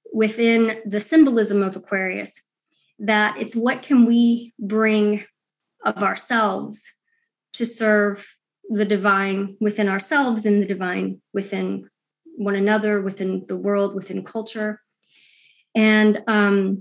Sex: female